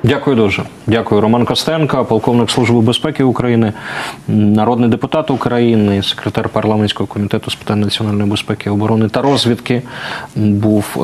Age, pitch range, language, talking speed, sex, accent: 20-39, 105-125 Hz, Ukrainian, 125 wpm, male, native